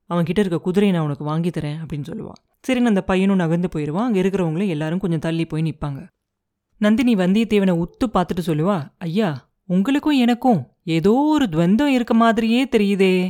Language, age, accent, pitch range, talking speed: Tamil, 30-49, native, 170-230 Hz, 155 wpm